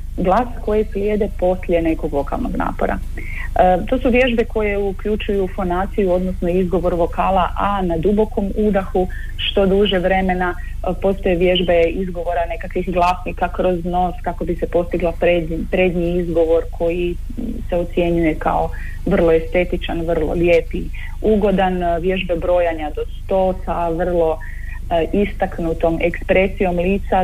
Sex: female